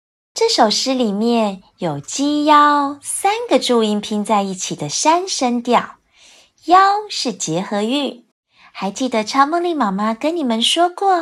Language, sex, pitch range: Chinese, female, 215-310 Hz